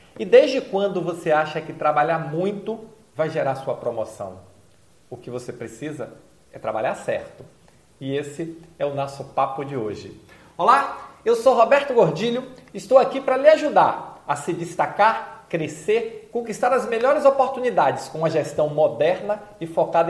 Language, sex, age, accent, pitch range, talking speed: Portuguese, male, 40-59, Brazilian, 150-200 Hz, 155 wpm